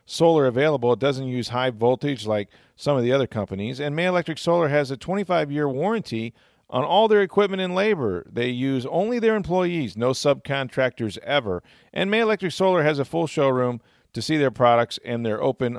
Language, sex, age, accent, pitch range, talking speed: English, male, 40-59, American, 120-165 Hz, 190 wpm